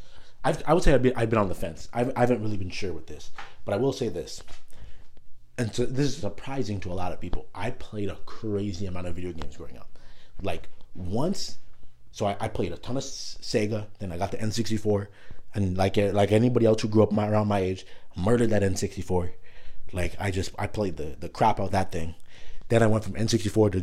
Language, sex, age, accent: English, male, 30-49, American